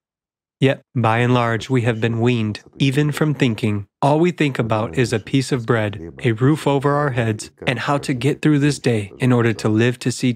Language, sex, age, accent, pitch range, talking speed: English, male, 30-49, American, 110-145 Hz, 220 wpm